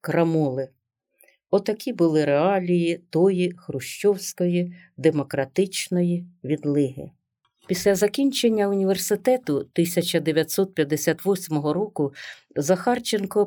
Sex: female